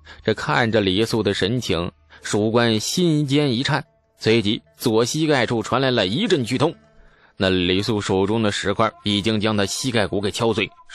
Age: 20-39